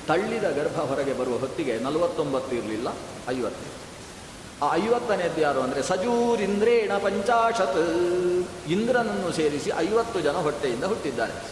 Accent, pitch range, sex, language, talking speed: native, 145-205 Hz, male, Kannada, 105 wpm